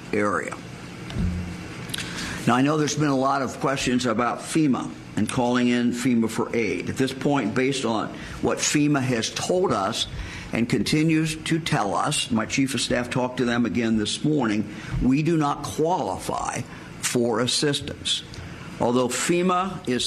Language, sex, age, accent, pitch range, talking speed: English, male, 50-69, American, 120-145 Hz, 155 wpm